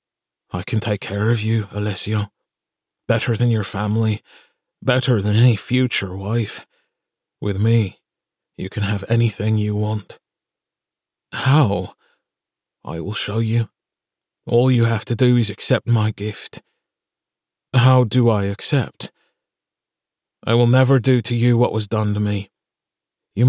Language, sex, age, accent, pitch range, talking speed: English, male, 30-49, British, 110-125 Hz, 140 wpm